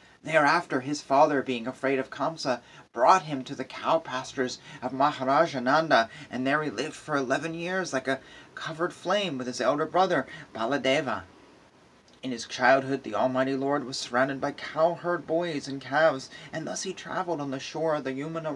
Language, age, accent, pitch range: English, 30-49, American, 130-170 Hz